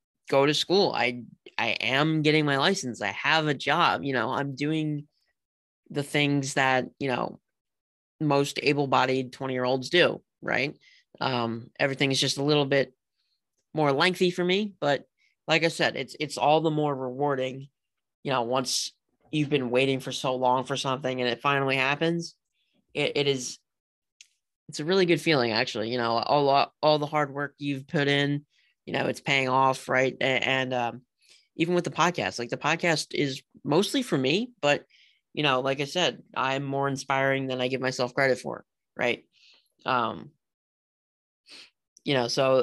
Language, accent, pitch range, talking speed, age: English, American, 130-150 Hz, 175 wpm, 20-39